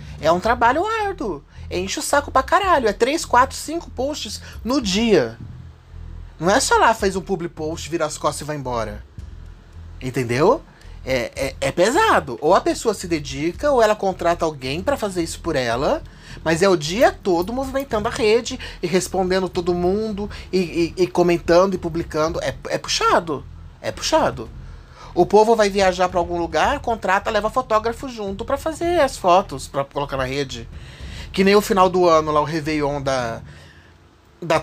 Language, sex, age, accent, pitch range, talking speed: Portuguese, male, 30-49, Brazilian, 145-235 Hz, 175 wpm